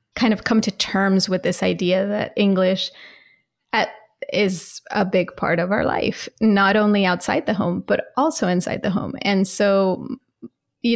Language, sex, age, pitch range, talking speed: English, female, 30-49, 185-225 Hz, 165 wpm